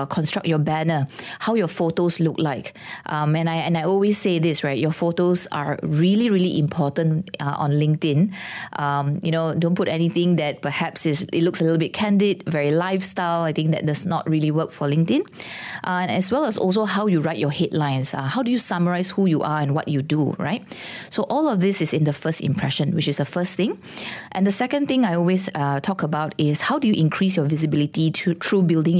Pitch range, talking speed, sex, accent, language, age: 150-185 Hz, 225 wpm, female, Malaysian, English, 20-39